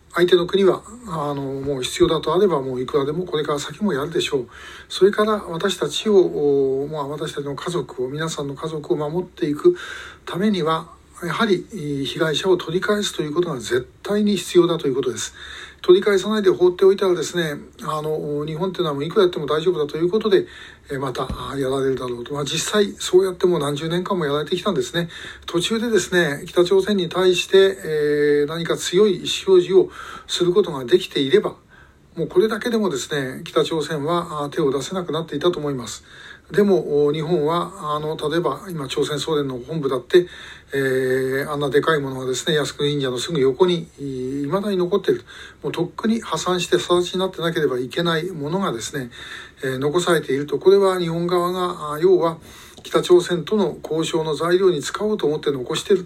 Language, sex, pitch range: Japanese, male, 145-195 Hz